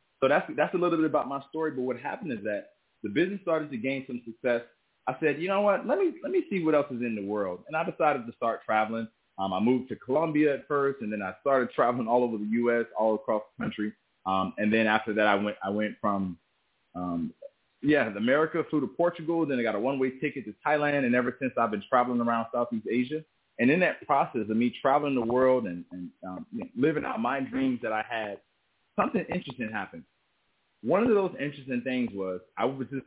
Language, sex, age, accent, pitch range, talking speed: English, male, 20-39, American, 110-145 Hz, 235 wpm